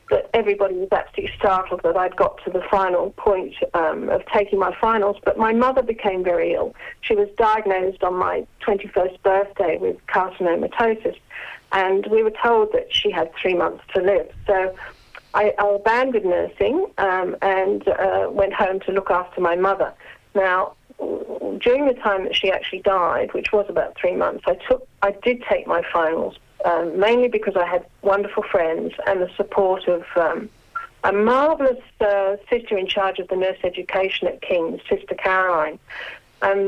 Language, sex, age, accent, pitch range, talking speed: English, female, 40-59, British, 190-245 Hz, 170 wpm